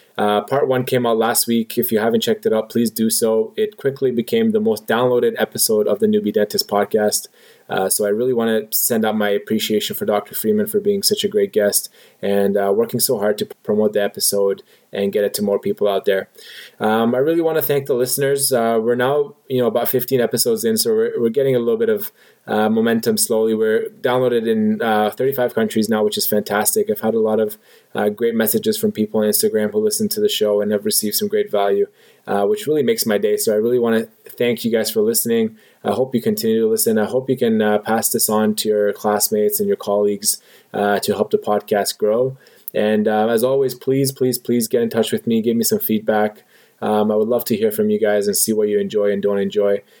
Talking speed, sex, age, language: 240 wpm, male, 20-39, English